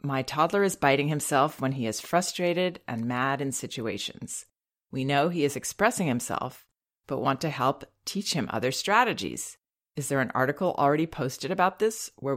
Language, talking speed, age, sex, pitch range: English, 175 wpm, 30-49, female, 130-165 Hz